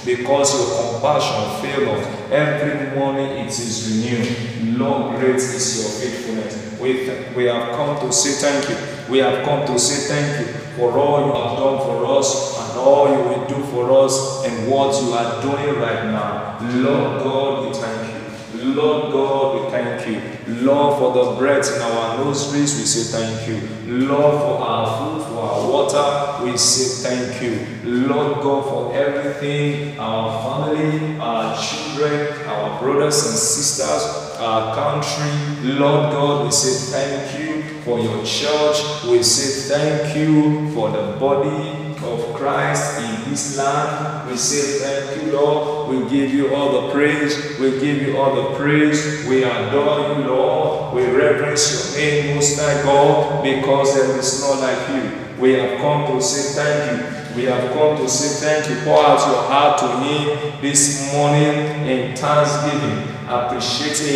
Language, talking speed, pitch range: English, 165 wpm, 125-145 Hz